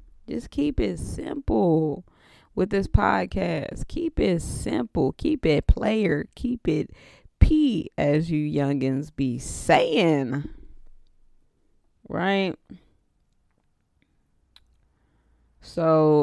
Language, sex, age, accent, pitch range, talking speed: English, female, 20-39, American, 140-175 Hz, 85 wpm